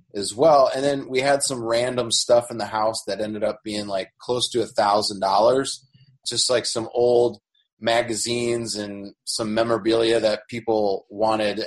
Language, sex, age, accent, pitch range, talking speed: English, male, 30-49, American, 105-135 Hz, 165 wpm